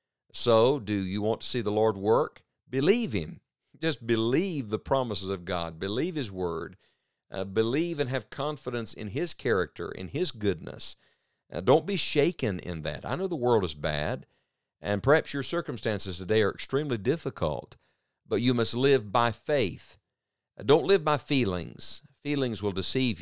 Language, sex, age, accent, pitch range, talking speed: English, male, 50-69, American, 100-130 Hz, 170 wpm